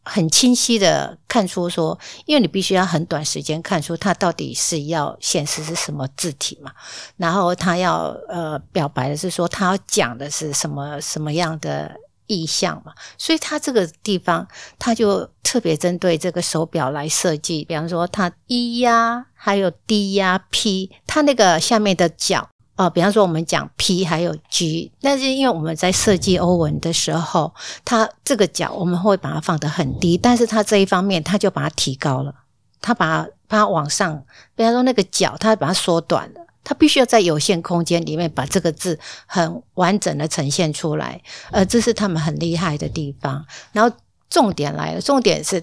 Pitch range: 160-205 Hz